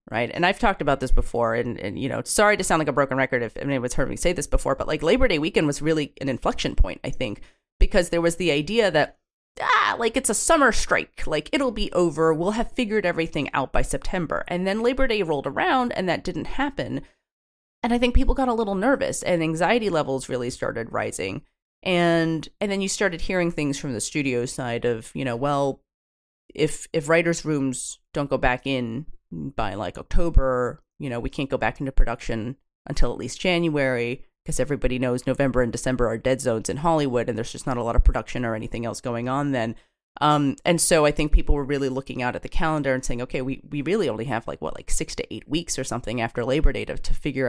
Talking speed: 230 wpm